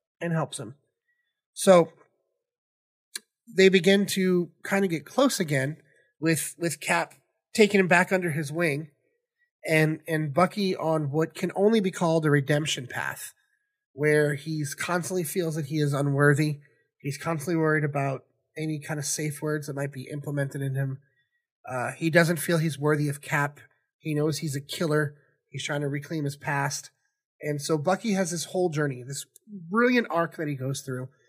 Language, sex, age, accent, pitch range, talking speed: English, male, 30-49, American, 150-195 Hz, 170 wpm